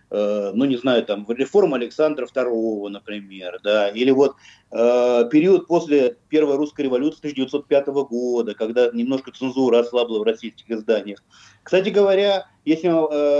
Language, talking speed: Russian, 130 wpm